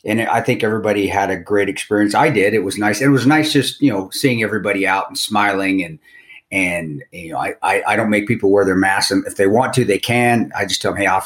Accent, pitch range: American, 95-125 Hz